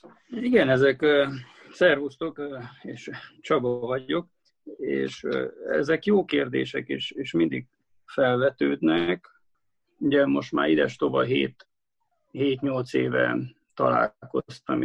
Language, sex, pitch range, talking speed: Hungarian, male, 100-145 Hz, 90 wpm